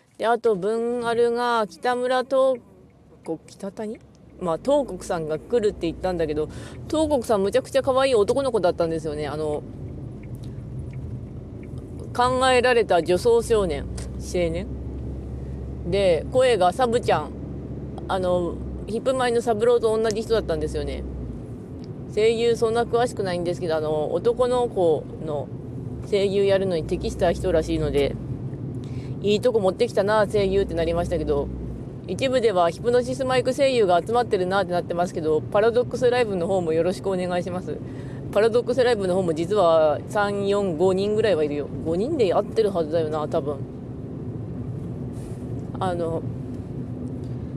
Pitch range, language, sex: 140-230 Hz, Japanese, female